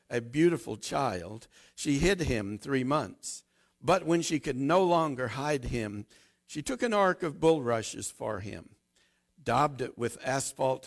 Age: 60-79